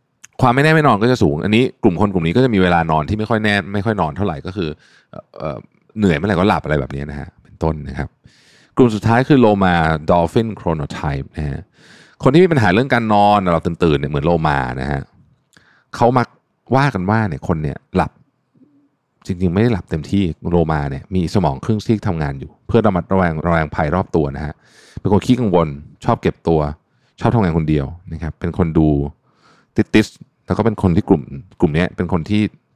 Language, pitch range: Thai, 80-110 Hz